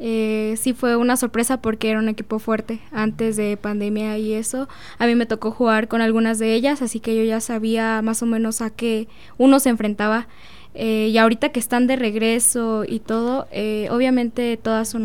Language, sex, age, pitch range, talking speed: Spanish, female, 10-29, 220-245 Hz, 200 wpm